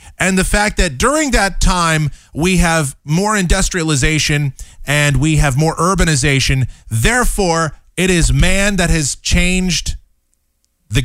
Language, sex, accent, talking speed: English, male, American, 130 wpm